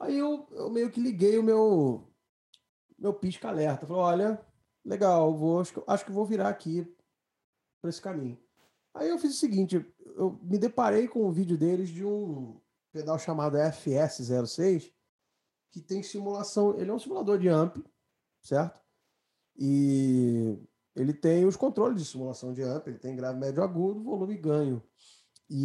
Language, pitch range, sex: Portuguese, 140-200 Hz, male